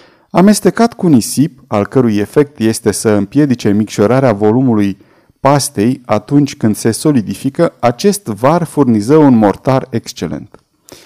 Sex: male